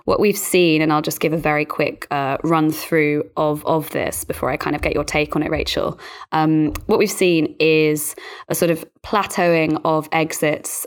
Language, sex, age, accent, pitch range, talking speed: English, female, 20-39, British, 150-165 Hz, 205 wpm